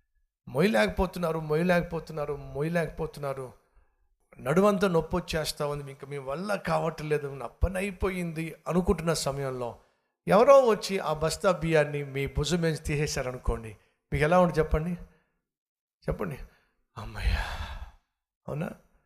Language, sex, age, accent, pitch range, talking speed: Telugu, male, 60-79, native, 140-185 Hz, 100 wpm